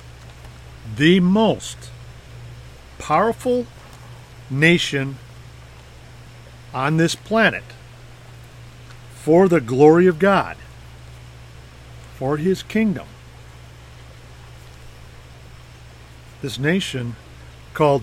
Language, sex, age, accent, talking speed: English, male, 50-69, American, 60 wpm